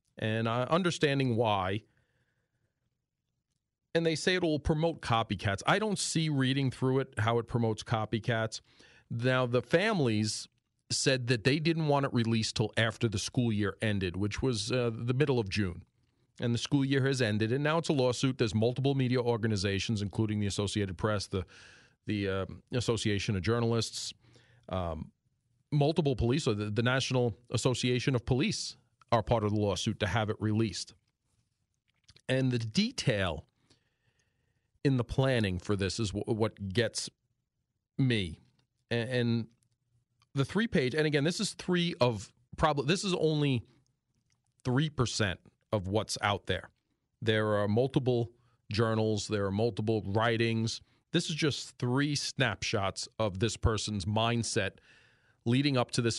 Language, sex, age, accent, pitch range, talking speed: English, male, 40-59, American, 110-130 Hz, 150 wpm